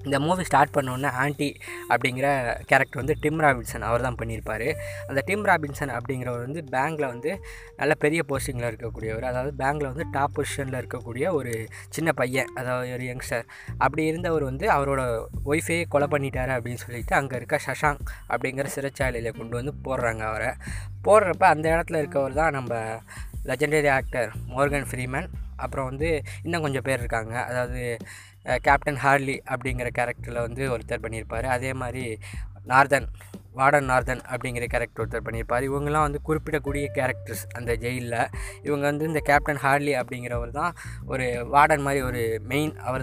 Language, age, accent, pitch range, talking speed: Tamil, 20-39, native, 120-145 Hz, 150 wpm